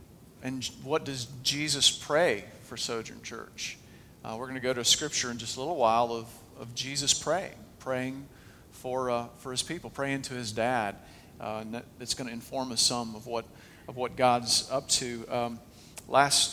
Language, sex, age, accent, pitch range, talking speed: English, male, 50-69, American, 120-140 Hz, 190 wpm